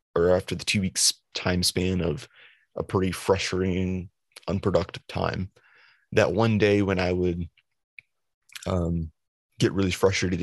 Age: 30-49